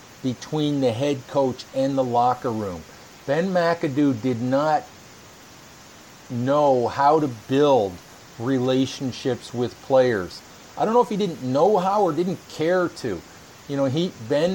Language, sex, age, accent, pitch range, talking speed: English, male, 50-69, American, 130-165 Hz, 145 wpm